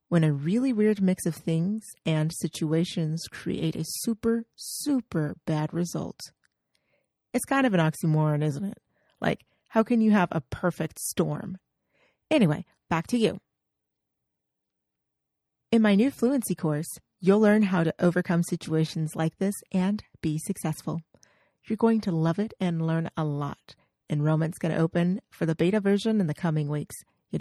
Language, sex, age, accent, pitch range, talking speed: English, female, 40-59, American, 160-210 Hz, 160 wpm